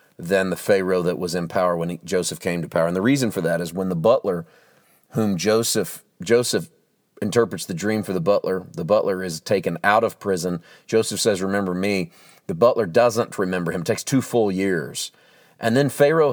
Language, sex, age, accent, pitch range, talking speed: English, male, 40-59, American, 95-115 Hz, 200 wpm